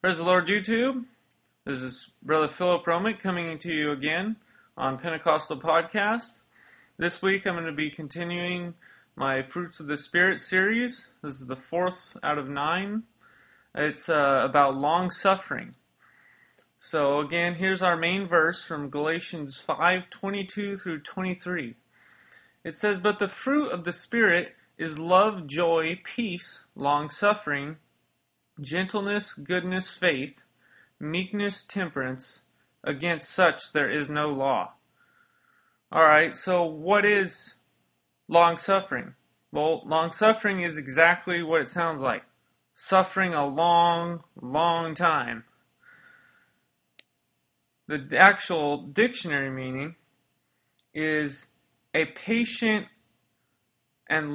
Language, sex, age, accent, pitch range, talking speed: English, male, 30-49, American, 150-190 Hz, 110 wpm